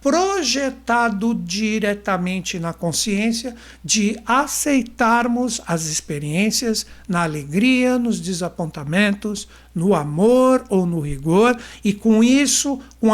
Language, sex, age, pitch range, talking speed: Portuguese, male, 60-79, 185-255 Hz, 95 wpm